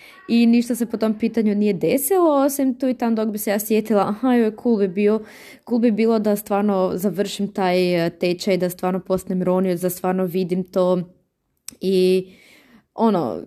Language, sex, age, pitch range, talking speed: Croatian, female, 20-39, 175-225 Hz, 180 wpm